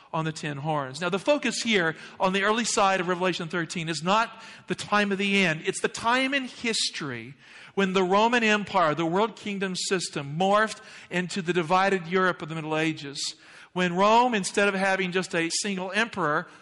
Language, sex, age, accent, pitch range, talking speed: English, male, 50-69, American, 170-210 Hz, 190 wpm